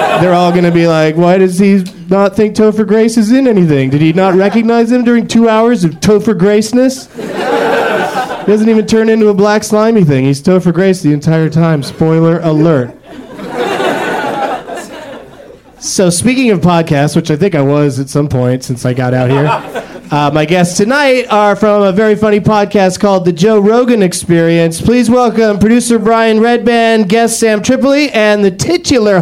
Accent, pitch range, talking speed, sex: American, 175-250 Hz, 180 wpm, male